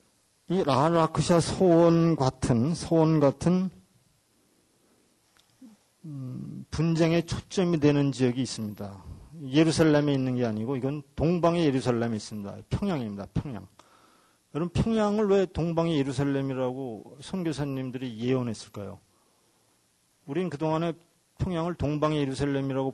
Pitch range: 120-160 Hz